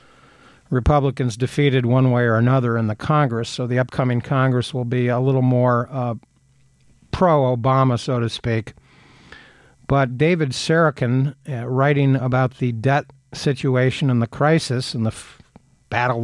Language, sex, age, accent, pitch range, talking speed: English, male, 60-79, American, 120-145 Hz, 145 wpm